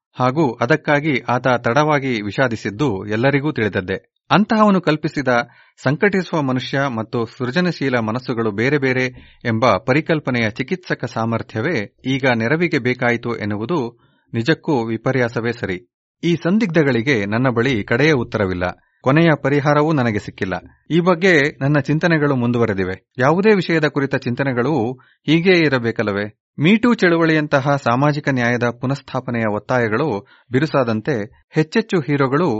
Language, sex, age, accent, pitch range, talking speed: Kannada, male, 30-49, native, 105-150 Hz, 105 wpm